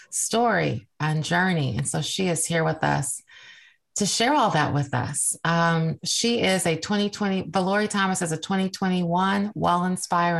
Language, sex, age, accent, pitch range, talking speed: English, female, 30-49, American, 160-195 Hz, 160 wpm